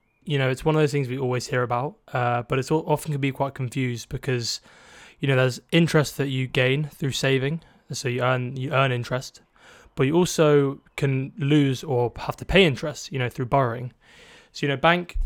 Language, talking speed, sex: English, 210 wpm, male